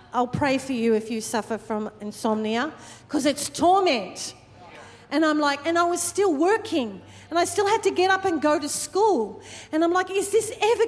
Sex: female